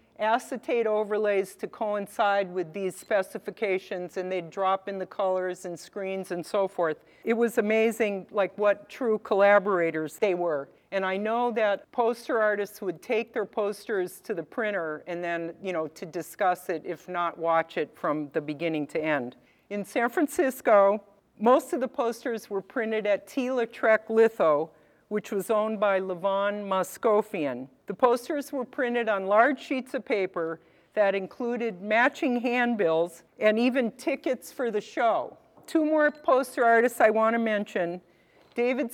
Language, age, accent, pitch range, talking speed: English, 50-69, American, 190-240 Hz, 160 wpm